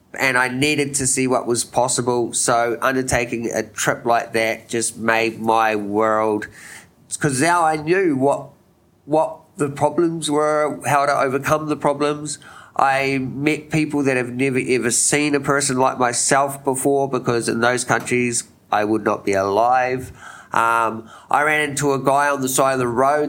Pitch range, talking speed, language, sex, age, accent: 120-145 Hz, 170 wpm, English, male, 30-49, Australian